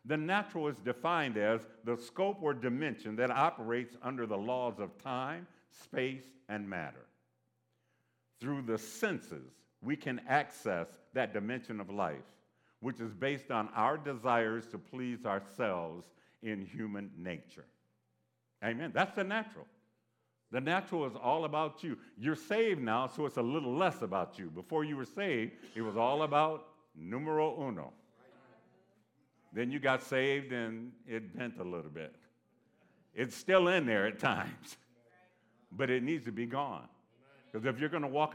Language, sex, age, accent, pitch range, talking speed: English, male, 60-79, American, 105-155 Hz, 155 wpm